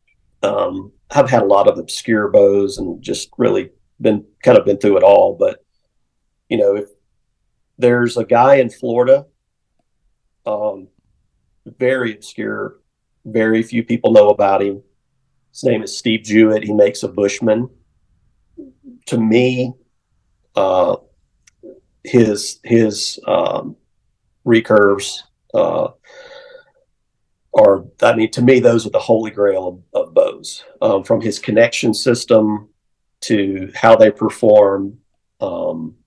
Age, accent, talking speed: 40-59, American, 125 wpm